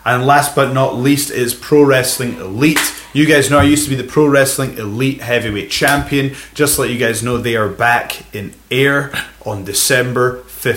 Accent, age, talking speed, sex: British, 30-49, 195 wpm, male